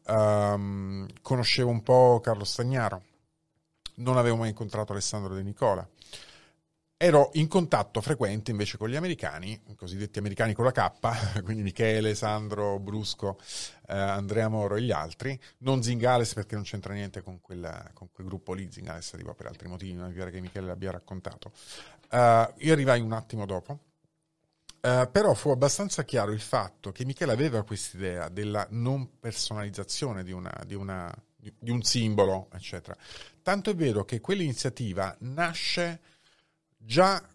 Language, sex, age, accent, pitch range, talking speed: Italian, male, 40-59, native, 100-135 Hz, 155 wpm